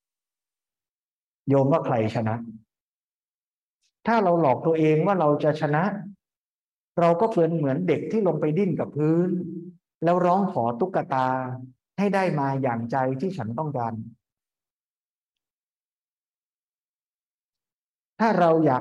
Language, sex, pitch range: Thai, male, 130-165 Hz